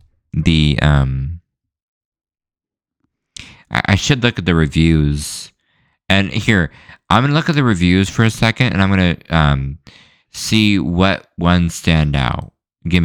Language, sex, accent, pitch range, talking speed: English, male, American, 75-90 Hz, 135 wpm